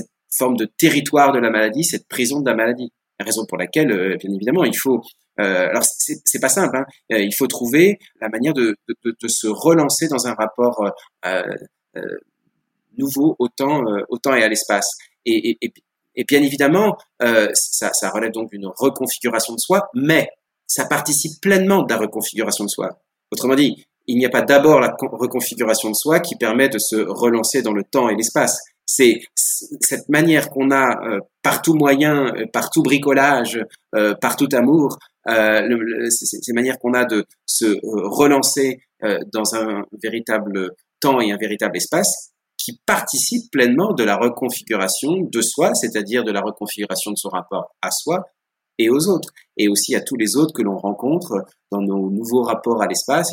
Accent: French